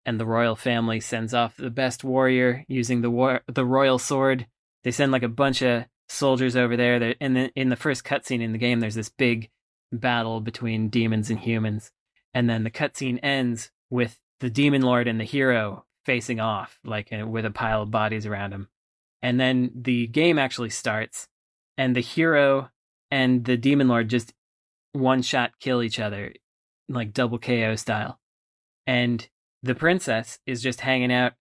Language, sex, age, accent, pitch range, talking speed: English, male, 20-39, American, 115-130 Hz, 180 wpm